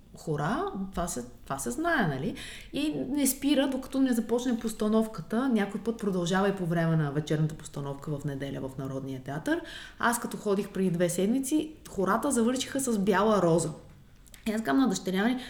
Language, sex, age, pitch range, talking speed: Bulgarian, female, 30-49, 160-235 Hz, 165 wpm